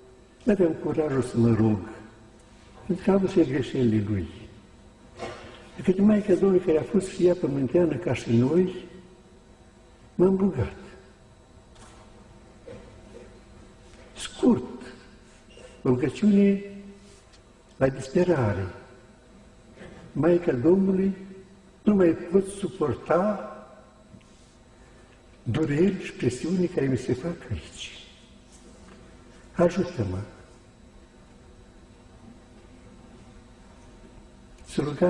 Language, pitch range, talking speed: Romanian, 120-180 Hz, 80 wpm